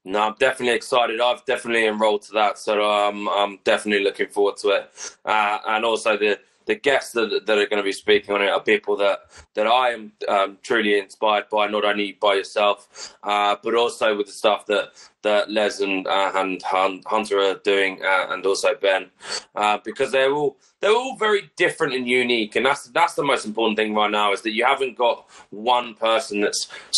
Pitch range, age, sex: 100-140 Hz, 20-39, male